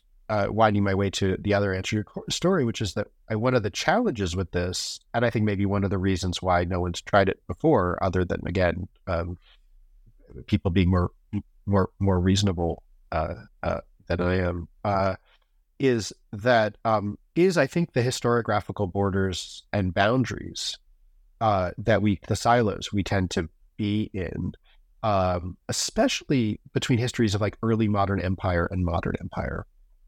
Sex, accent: male, American